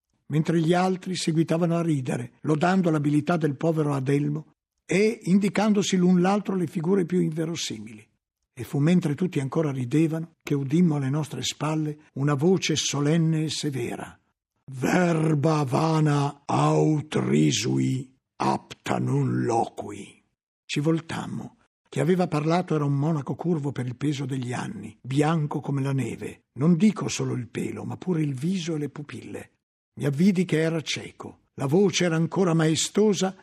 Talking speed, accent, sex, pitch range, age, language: 145 wpm, native, male, 140-175 Hz, 60-79, Italian